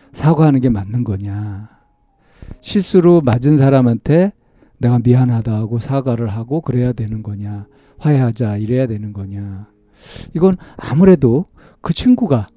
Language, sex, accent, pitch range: Korean, male, native, 110-155 Hz